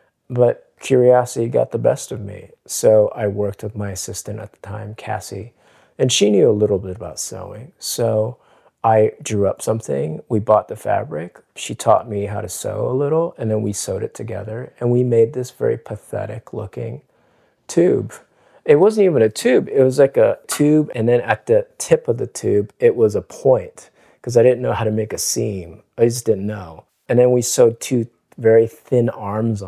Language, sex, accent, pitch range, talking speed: English, male, American, 105-130 Hz, 200 wpm